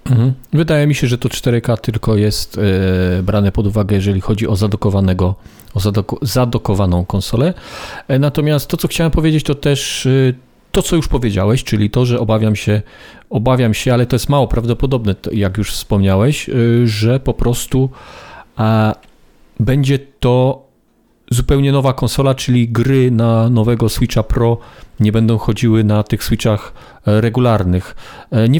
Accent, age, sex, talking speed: native, 40-59, male, 140 wpm